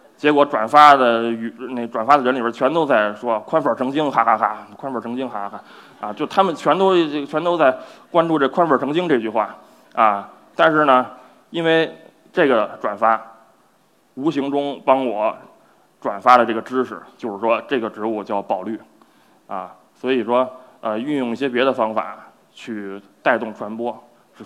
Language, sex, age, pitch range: Chinese, male, 20-39, 110-130 Hz